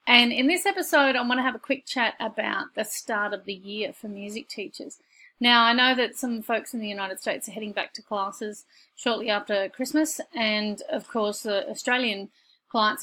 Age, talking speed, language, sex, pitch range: 30-49, 205 wpm, English, female, 205-250 Hz